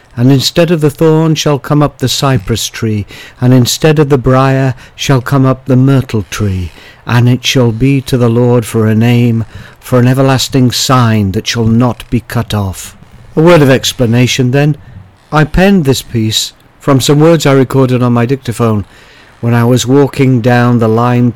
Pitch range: 110-135 Hz